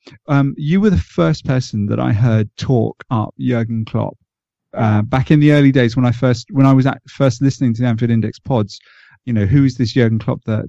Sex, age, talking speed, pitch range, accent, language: male, 40-59, 230 wpm, 120-145 Hz, British, English